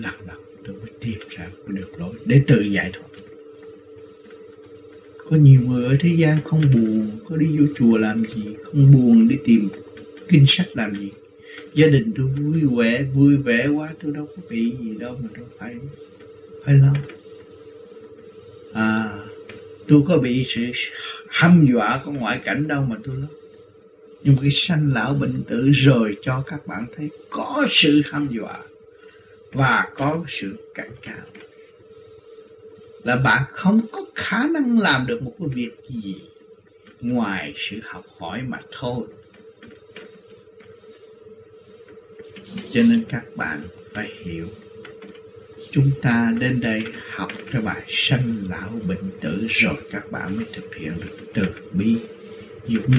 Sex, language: male, Vietnamese